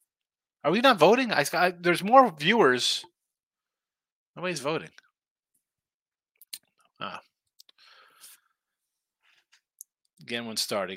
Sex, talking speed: male, 80 wpm